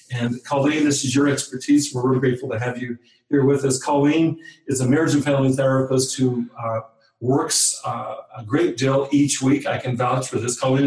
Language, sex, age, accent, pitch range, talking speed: English, male, 40-59, American, 120-140 Hz, 205 wpm